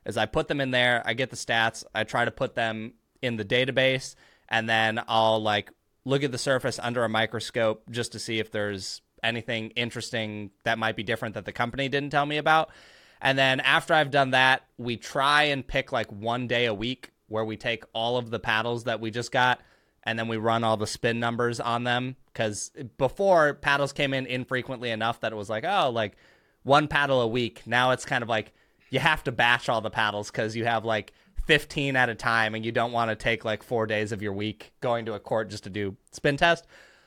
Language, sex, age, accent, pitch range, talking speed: English, male, 20-39, American, 110-135 Hz, 230 wpm